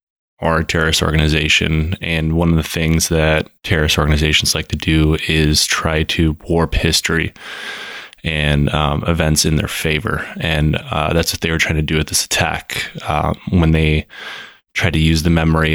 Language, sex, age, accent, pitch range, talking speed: English, male, 20-39, American, 80-85 Hz, 175 wpm